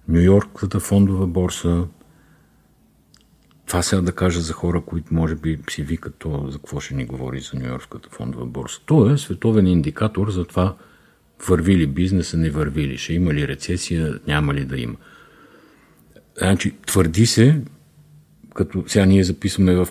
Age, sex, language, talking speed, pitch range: 50-69, male, Bulgarian, 165 wpm, 80-95 Hz